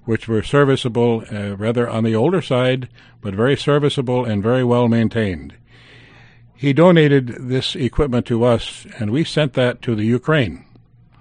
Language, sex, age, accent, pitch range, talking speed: English, male, 60-79, American, 110-125 Hz, 155 wpm